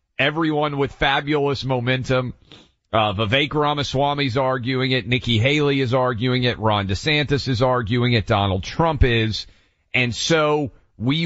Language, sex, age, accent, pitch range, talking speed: English, male, 40-59, American, 105-140 Hz, 135 wpm